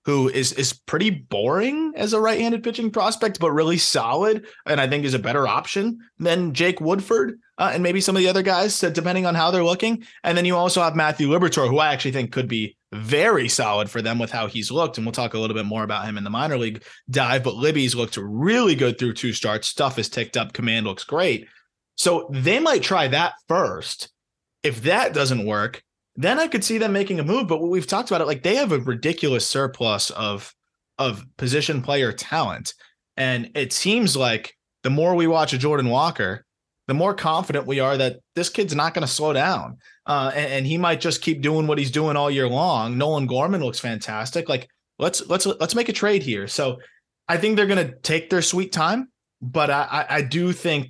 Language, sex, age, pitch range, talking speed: English, male, 20-39, 130-180 Hz, 220 wpm